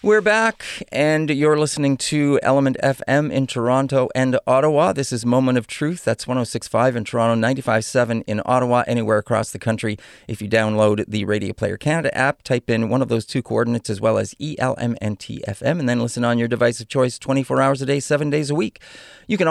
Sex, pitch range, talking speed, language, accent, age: male, 115-150 Hz, 205 wpm, English, American, 40-59